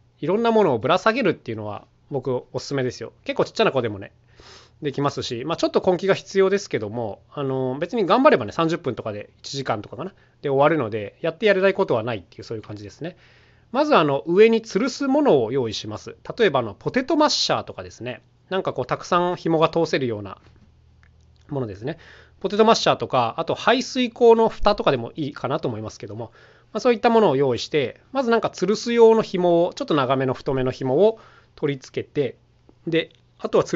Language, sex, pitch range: Japanese, male, 120-200 Hz